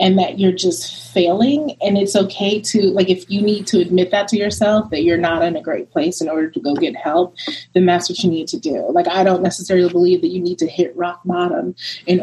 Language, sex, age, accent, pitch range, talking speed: English, female, 30-49, American, 185-245 Hz, 250 wpm